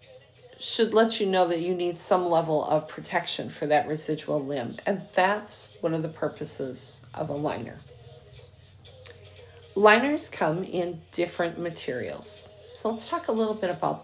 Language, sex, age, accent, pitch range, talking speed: English, female, 40-59, American, 155-210 Hz, 155 wpm